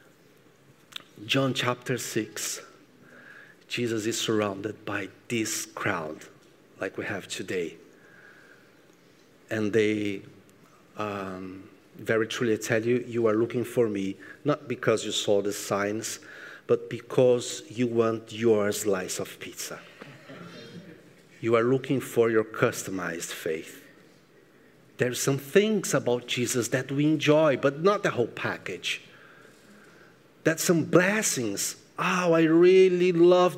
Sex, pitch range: male, 120-185 Hz